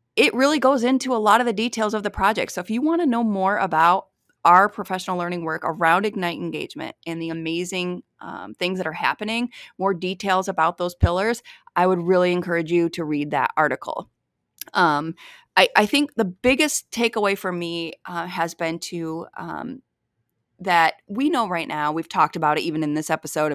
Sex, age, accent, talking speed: female, 30-49, American, 195 wpm